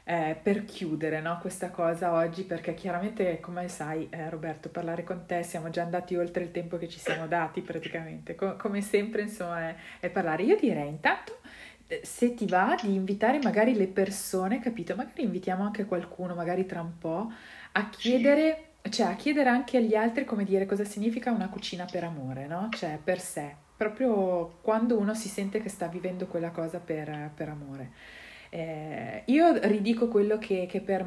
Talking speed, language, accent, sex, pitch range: 175 wpm, Italian, native, female, 170-210 Hz